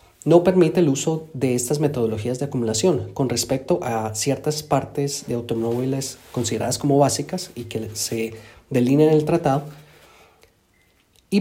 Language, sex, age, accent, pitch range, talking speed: Spanish, male, 30-49, Colombian, 120-155 Hz, 135 wpm